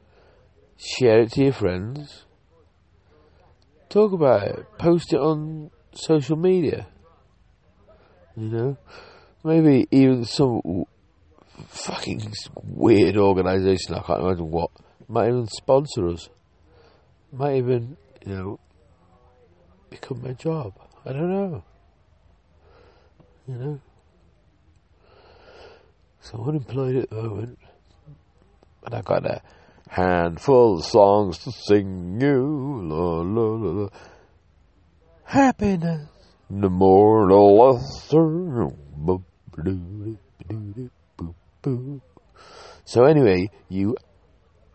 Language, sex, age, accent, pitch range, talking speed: English, male, 50-69, British, 85-130 Hz, 90 wpm